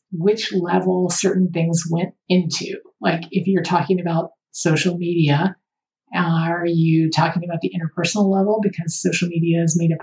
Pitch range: 165-190 Hz